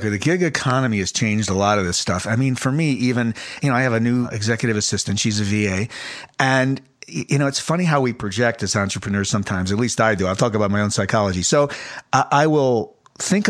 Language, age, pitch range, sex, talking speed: English, 50-69, 115-150 Hz, male, 225 wpm